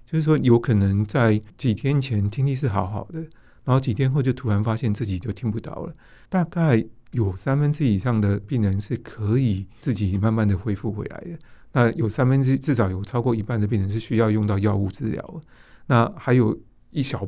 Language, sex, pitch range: Chinese, male, 105-130 Hz